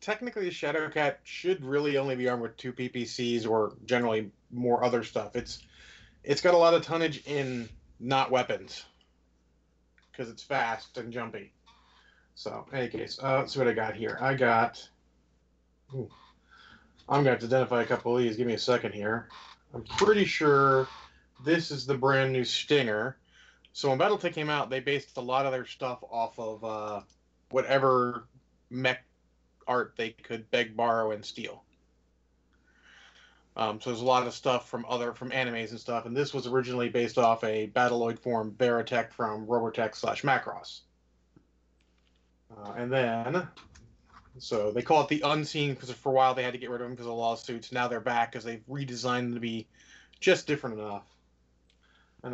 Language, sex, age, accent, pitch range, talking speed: English, male, 30-49, American, 105-130 Hz, 180 wpm